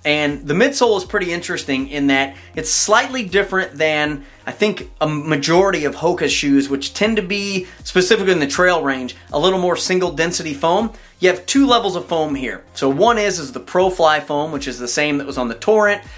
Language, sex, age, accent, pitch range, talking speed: English, male, 30-49, American, 140-190 Hz, 215 wpm